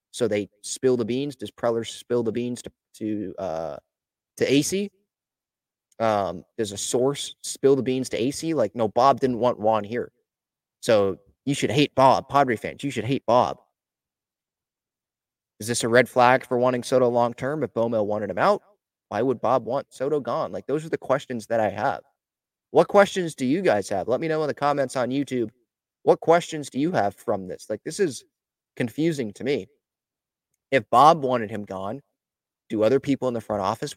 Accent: American